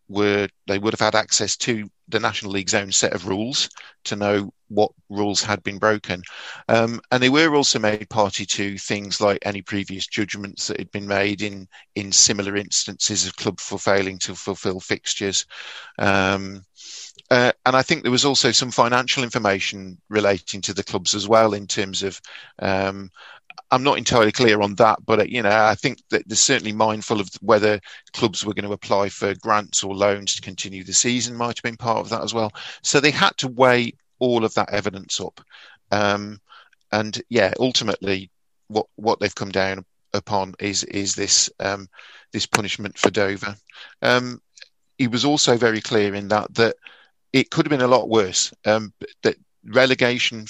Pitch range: 100-115 Hz